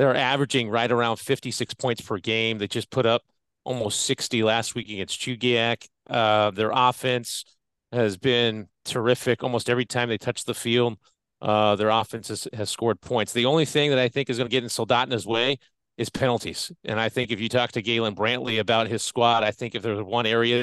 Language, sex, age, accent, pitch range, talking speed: English, male, 40-59, American, 115-135 Hz, 205 wpm